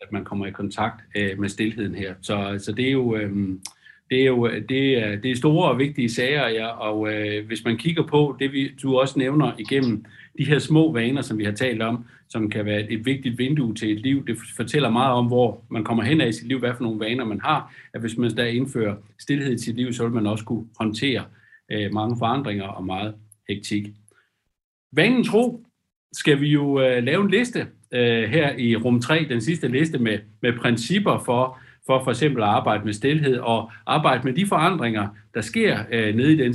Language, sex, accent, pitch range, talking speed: Danish, male, native, 110-135 Hz, 210 wpm